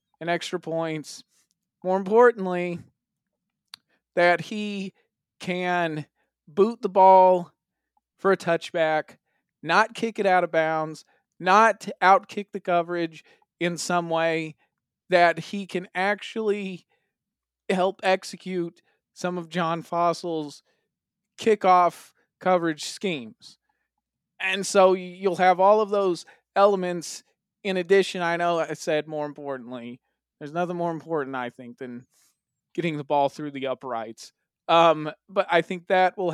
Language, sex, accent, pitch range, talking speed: English, male, American, 160-195 Hz, 125 wpm